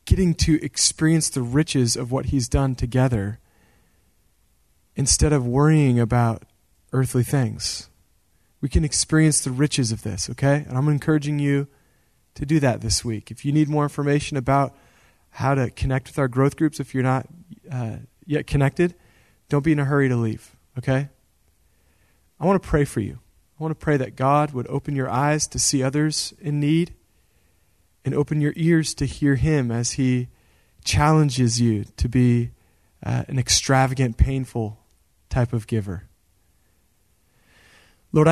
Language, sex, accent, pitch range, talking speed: English, male, American, 115-155 Hz, 160 wpm